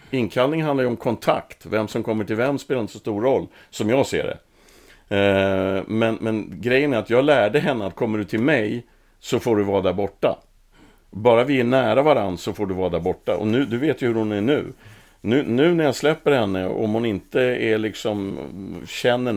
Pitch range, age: 100-125 Hz, 50-69